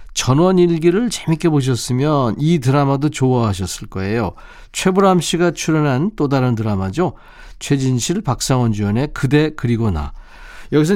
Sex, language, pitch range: male, Korean, 110-160 Hz